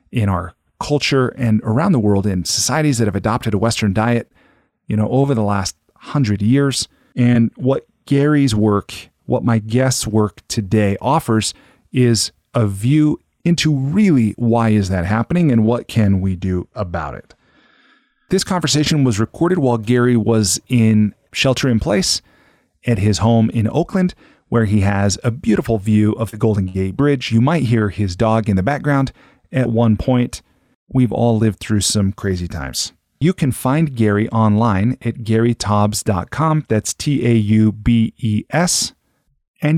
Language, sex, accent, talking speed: English, male, American, 155 wpm